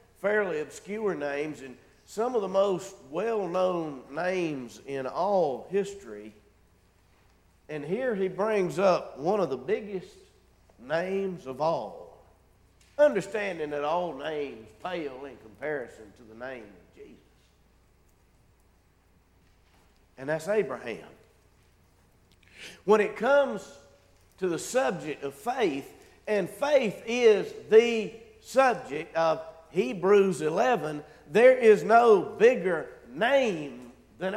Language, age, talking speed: English, 50-69, 110 wpm